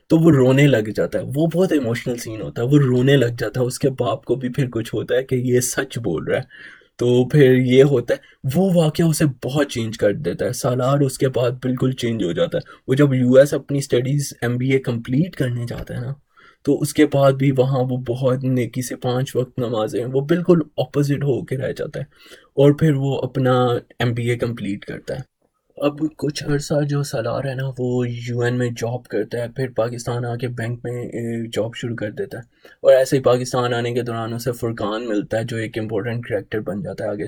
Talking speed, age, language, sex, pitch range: 230 wpm, 20-39, Urdu, male, 115-140 Hz